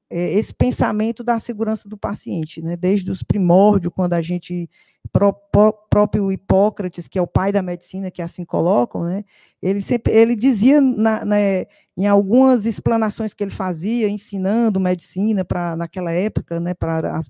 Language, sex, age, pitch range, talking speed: Portuguese, female, 20-39, 180-230 Hz, 165 wpm